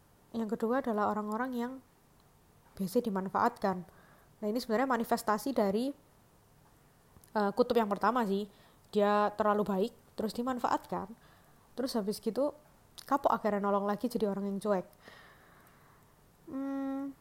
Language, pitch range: Indonesian, 205-245 Hz